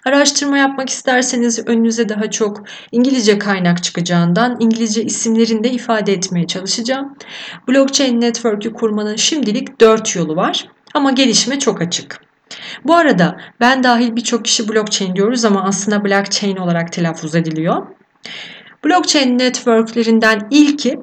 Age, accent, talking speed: 40-59, native, 125 wpm